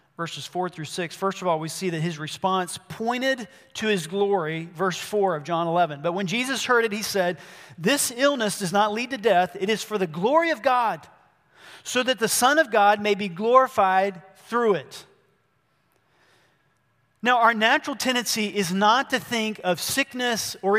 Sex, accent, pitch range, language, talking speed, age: male, American, 180-250 Hz, English, 185 wpm, 40-59